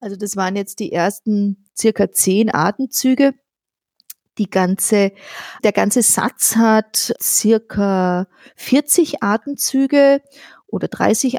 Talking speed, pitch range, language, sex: 95 wpm, 205-255 Hz, German, female